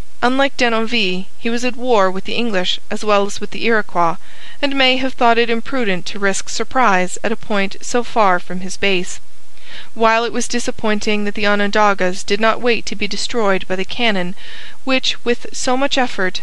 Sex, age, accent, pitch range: female, 40-59, American, 200-245 Hz